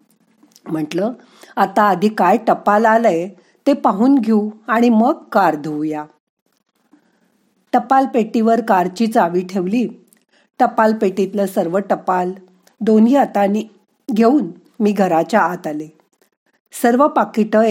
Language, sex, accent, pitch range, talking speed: Marathi, female, native, 195-240 Hz, 105 wpm